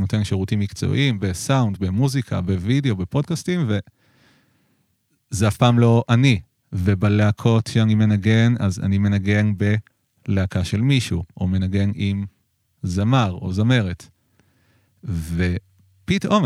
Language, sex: Hebrew, male